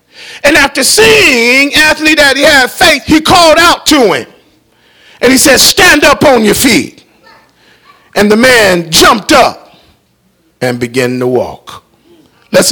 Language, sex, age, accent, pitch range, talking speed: English, male, 40-59, American, 240-315 Hz, 140 wpm